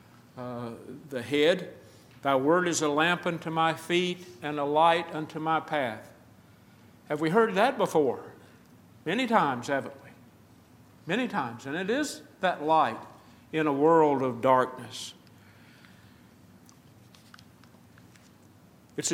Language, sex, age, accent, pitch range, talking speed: English, male, 50-69, American, 130-170 Hz, 120 wpm